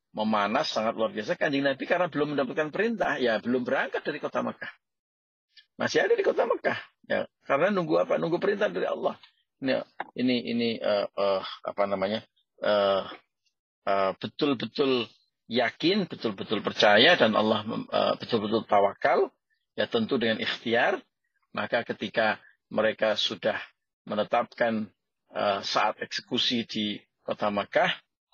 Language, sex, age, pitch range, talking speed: Indonesian, male, 40-59, 105-155 Hz, 135 wpm